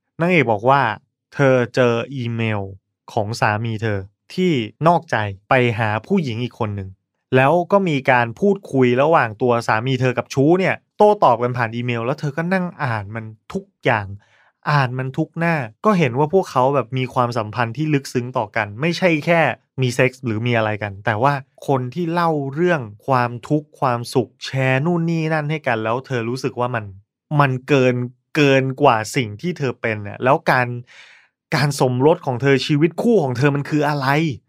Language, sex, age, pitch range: Thai, male, 20-39, 120-155 Hz